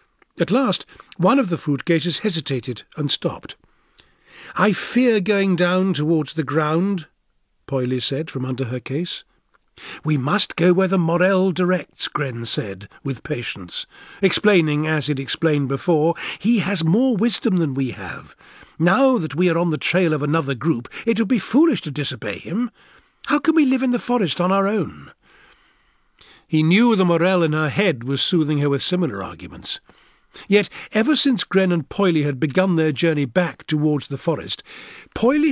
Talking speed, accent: 170 wpm, British